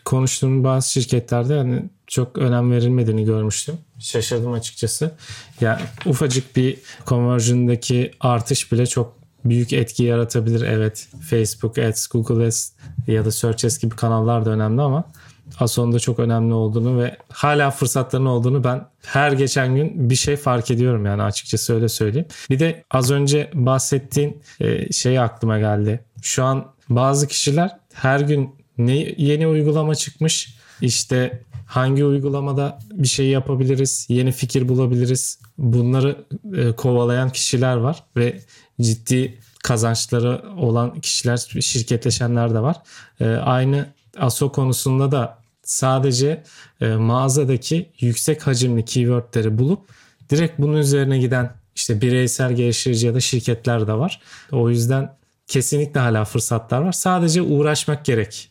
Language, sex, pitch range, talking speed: Turkish, male, 120-140 Hz, 130 wpm